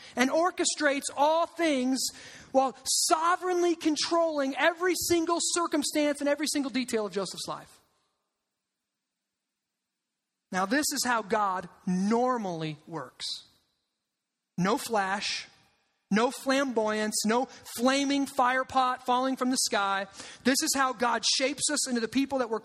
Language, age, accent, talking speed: English, 30-49, American, 125 wpm